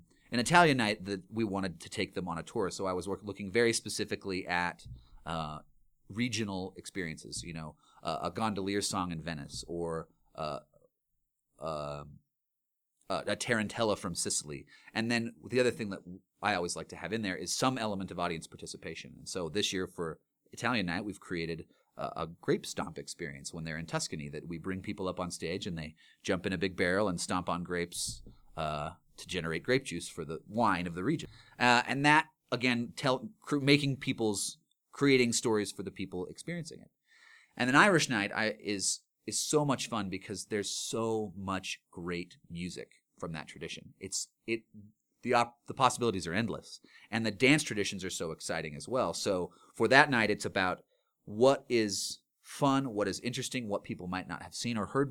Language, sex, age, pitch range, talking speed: English, male, 30-49, 90-120 Hz, 190 wpm